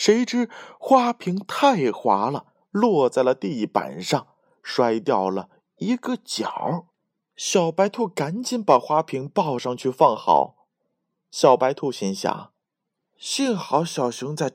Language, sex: Chinese, male